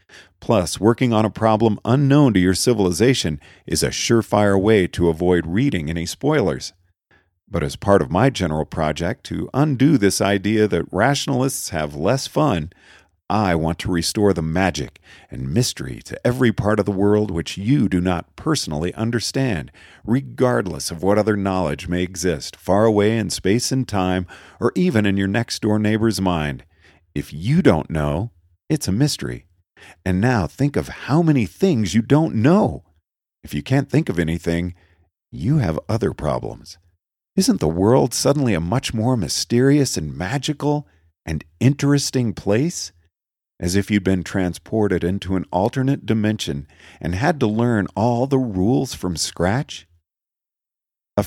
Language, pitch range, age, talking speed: English, 85-125 Hz, 50-69, 155 wpm